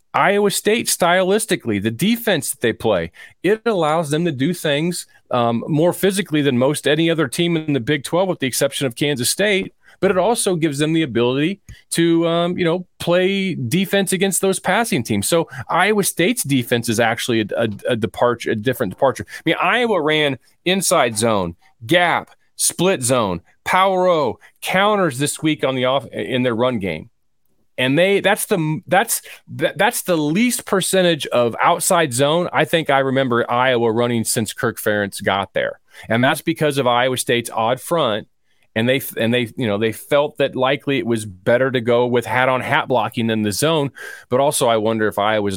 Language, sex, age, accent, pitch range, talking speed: English, male, 30-49, American, 110-170 Hz, 185 wpm